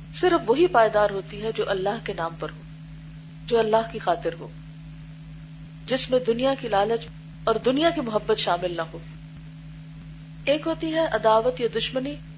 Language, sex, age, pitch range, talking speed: Urdu, female, 40-59, 155-230 Hz, 165 wpm